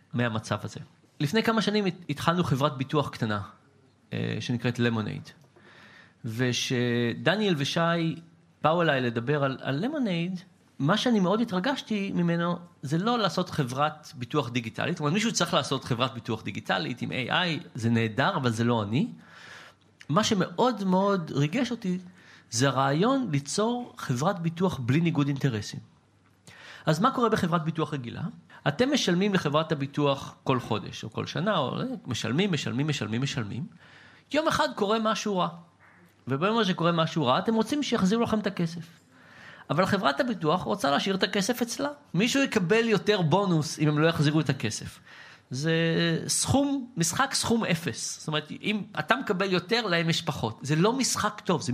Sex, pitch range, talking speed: male, 135-205 Hz, 150 wpm